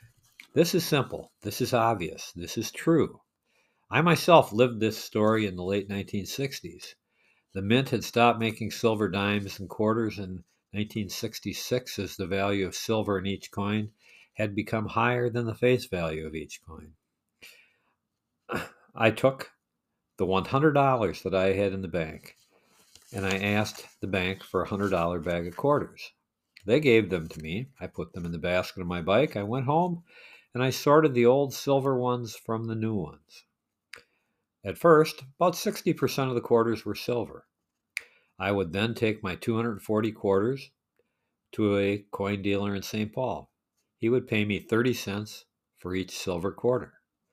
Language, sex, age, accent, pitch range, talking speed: English, male, 50-69, American, 95-120 Hz, 165 wpm